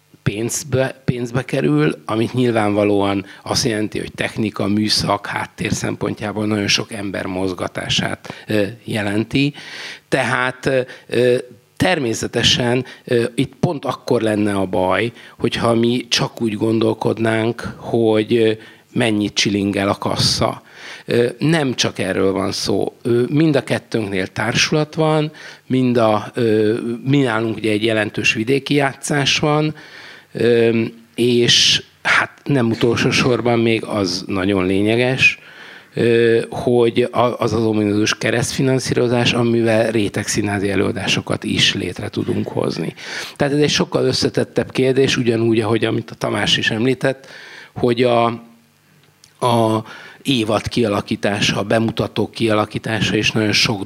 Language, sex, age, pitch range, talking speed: Hungarian, male, 60-79, 105-130 Hz, 110 wpm